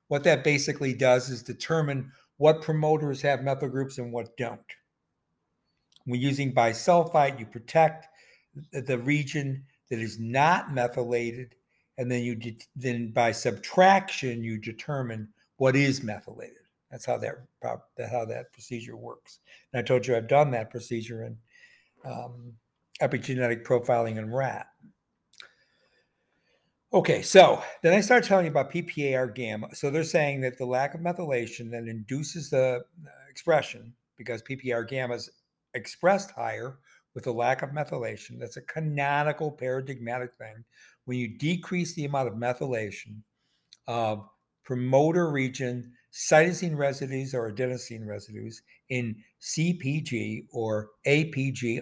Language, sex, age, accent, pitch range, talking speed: English, male, 60-79, American, 120-145 Hz, 135 wpm